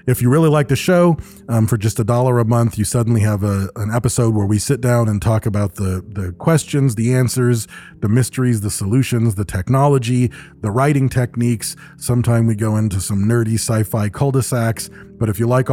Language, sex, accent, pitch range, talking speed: English, male, American, 105-130 Hz, 200 wpm